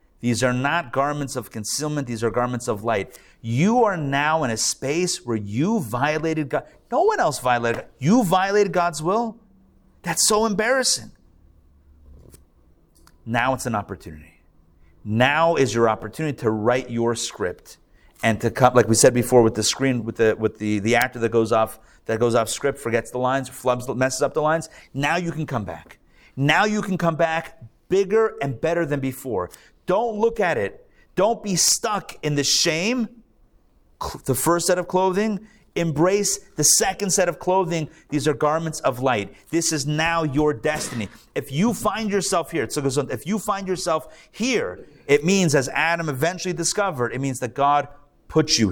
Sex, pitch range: male, 115-175 Hz